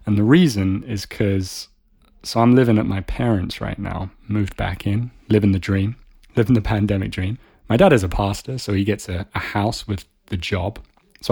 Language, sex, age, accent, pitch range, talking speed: English, male, 30-49, British, 95-120 Hz, 200 wpm